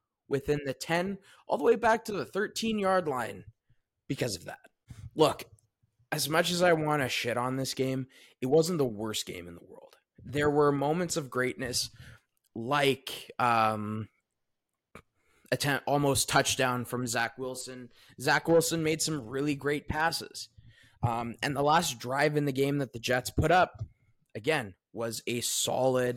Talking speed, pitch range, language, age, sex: 160 wpm, 115-150 Hz, English, 20-39, male